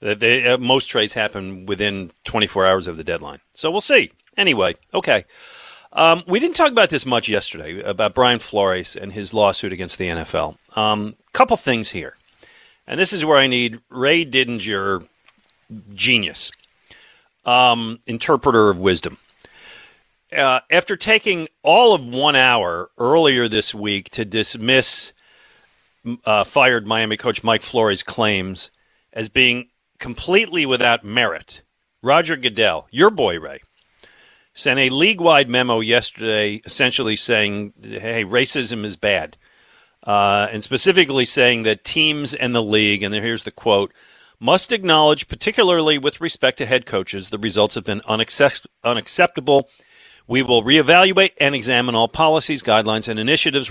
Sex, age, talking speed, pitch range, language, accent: male, 40-59, 145 wpm, 105-140 Hz, English, American